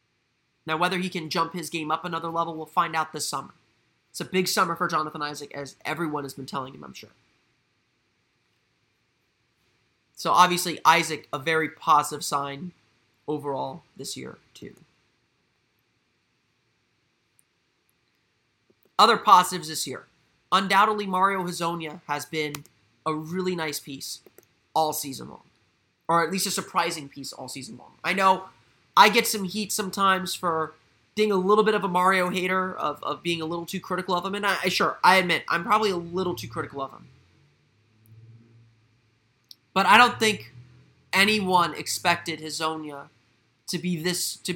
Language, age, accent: English, 30-49, American